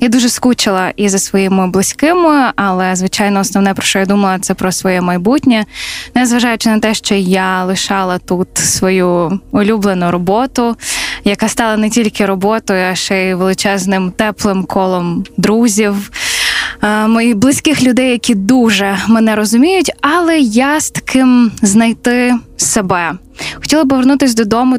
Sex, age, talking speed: female, 10-29, 140 wpm